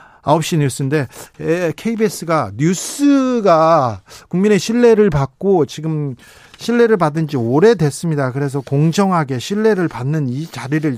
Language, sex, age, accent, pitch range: Korean, male, 40-59, native, 130-185 Hz